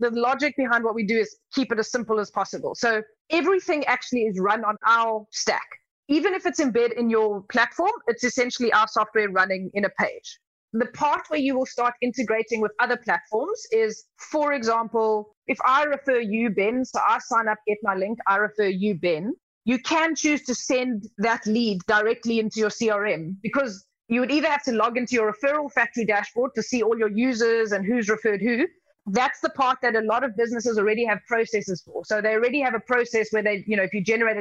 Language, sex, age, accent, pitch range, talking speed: English, female, 30-49, South African, 210-255 Hz, 215 wpm